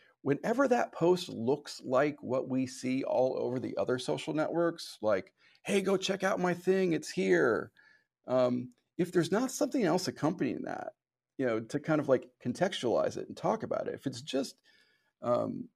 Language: English